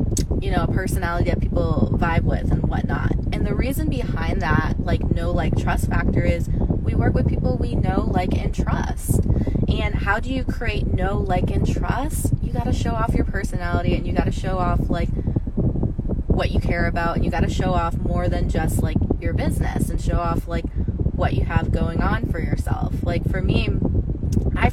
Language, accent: English, American